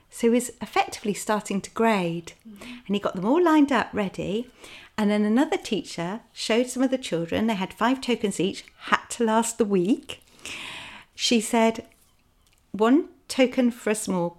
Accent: British